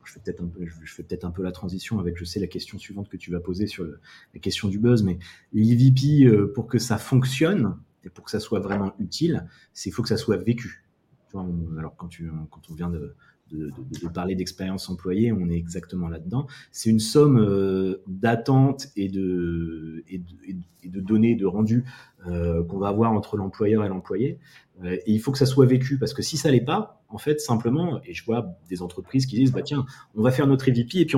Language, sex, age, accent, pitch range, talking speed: French, male, 30-49, French, 95-135 Hz, 235 wpm